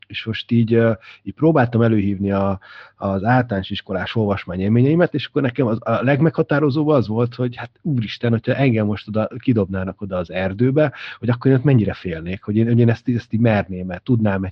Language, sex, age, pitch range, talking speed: Hungarian, male, 30-49, 105-125 Hz, 185 wpm